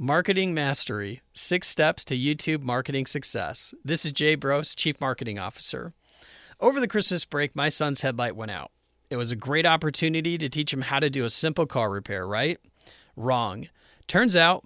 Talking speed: 175 wpm